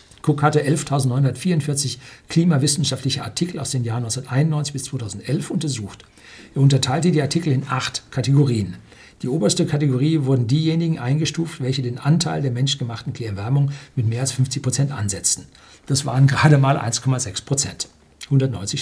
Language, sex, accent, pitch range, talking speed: German, male, German, 125-155 Hz, 135 wpm